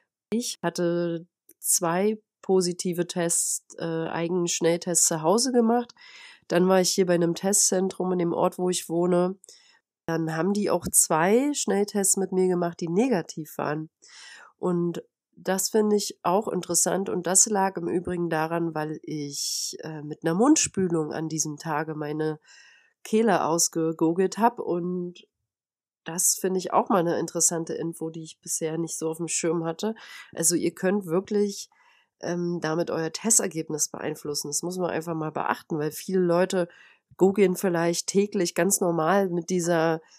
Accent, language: German, German